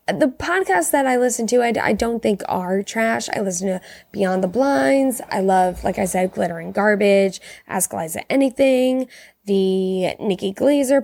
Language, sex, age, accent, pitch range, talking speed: English, female, 10-29, American, 185-225 Hz, 170 wpm